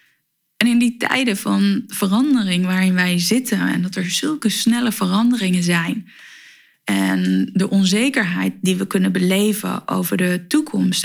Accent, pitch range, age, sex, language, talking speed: Dutch, 180-220 Hz, 20-39, female, Dutch, 140 wpm